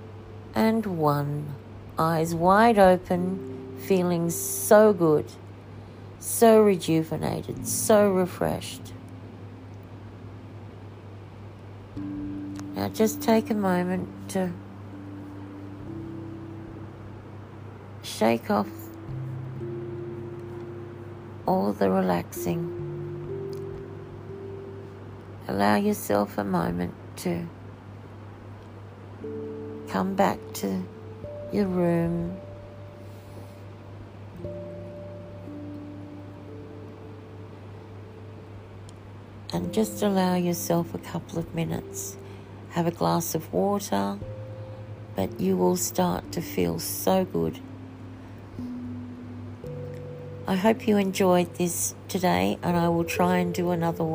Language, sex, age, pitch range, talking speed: English, female, 60-79, 100-150 Hz, 75 wpm